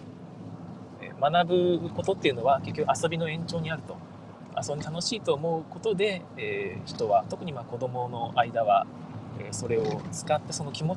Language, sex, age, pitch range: Japanese, male, 20-39, 140-180 Hz